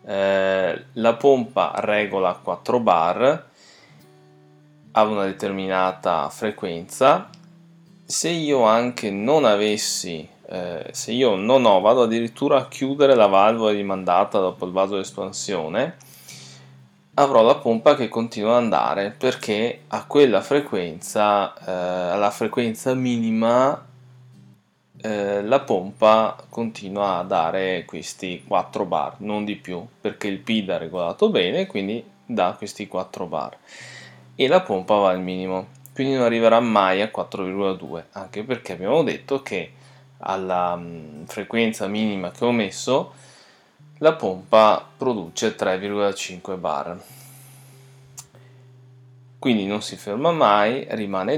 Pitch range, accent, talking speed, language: 95-130 Hz, native, 120 wpm, Italian